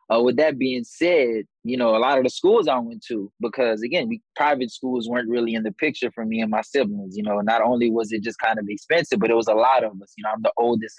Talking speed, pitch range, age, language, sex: 280 wpm, 110-120 Hz, 20-39, English, male